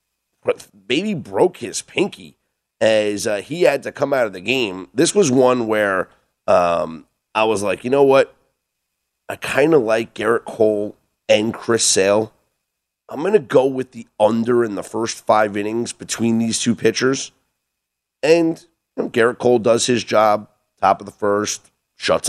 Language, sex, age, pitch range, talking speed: English, male, 30-49, 100-135 Hz, 170 wpm